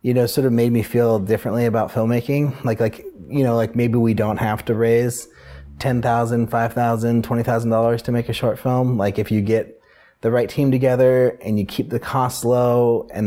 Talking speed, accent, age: 215 wpm, American, 30-49